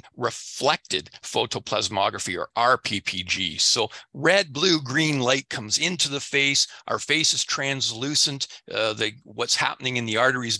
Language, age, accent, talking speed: English, 40-59, American, 135 wpm